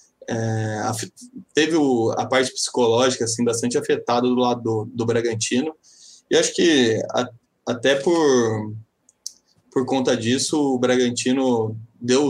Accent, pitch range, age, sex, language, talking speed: Brazilian, 115-130 Hz, 20-39, male, Portuguese, 130 wpm